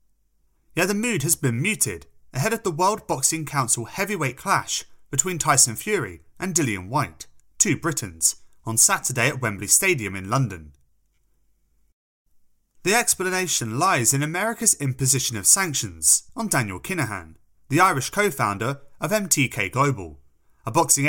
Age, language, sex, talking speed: 30-49, English, male, 135 wpm